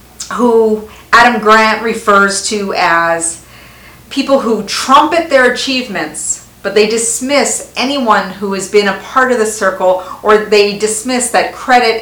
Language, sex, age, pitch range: English, female, 40-59, 190-245 Hz